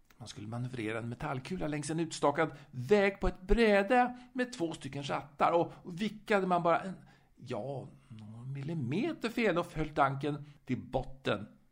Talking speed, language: 155 wpm, Swedish